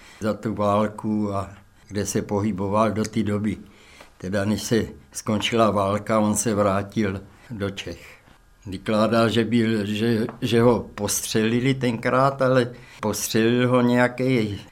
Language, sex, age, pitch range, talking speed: Czech, male, 60-79, 105-125 Hz, 120 wpm